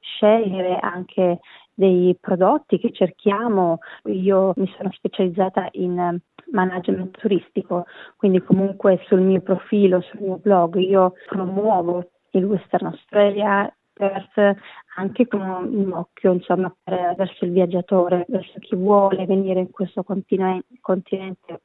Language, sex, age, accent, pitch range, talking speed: Italian, female, 30-49, native, 185-205 Hz, 125 wpm